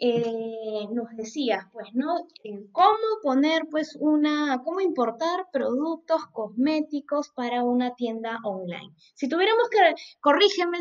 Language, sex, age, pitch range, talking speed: Spanish, female, 20-39, 230-300 Hz, 110 wpm